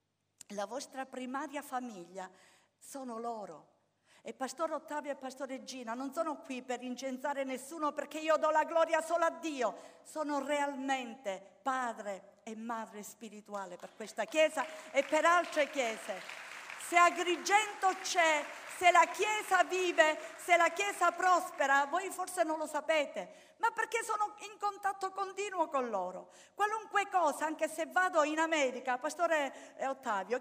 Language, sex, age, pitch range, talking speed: Italian, female, 50-69, 270-365 Hz, 140 wpm